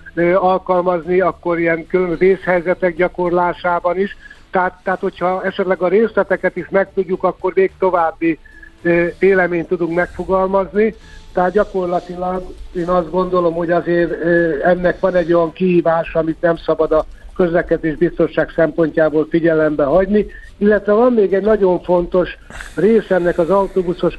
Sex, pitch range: male, 170-190 Hz